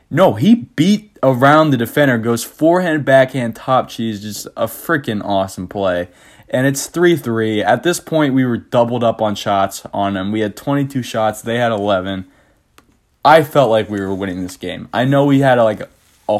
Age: 20-39